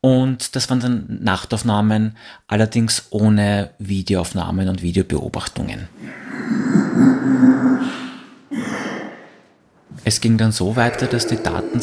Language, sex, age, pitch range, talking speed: German, male, 30-49, 100-120 Hz, 90 wpm